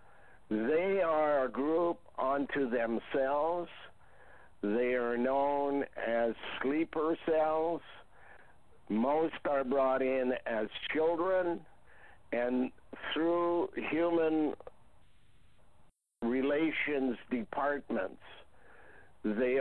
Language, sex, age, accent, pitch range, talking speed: English, male, 60-79, American, 120-145 Hz, 75 wpm